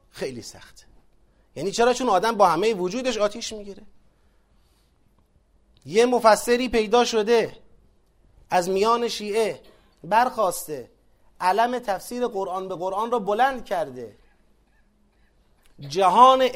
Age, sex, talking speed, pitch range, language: 30-49, male, 100 wpm, 210-265 Hz, Persian